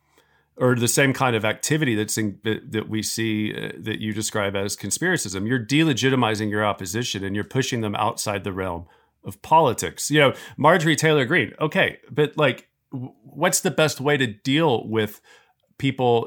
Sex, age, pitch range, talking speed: male, 40-59, 110-135 Hz, 160 wpm